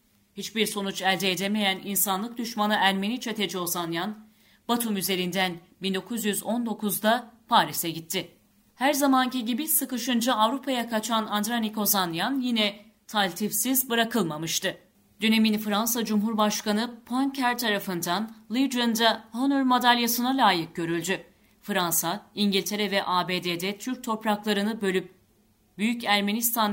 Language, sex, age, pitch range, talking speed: Turkish, female, 40-59, 190-230 Hz, 105 wpm